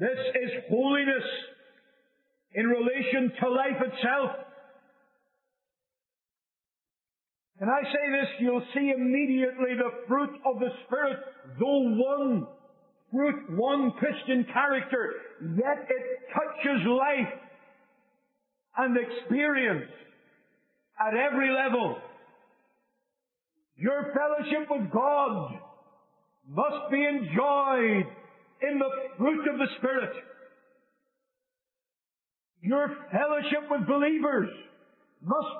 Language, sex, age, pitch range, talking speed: English, male, 50-69, 260-290 Hz, 90 wpm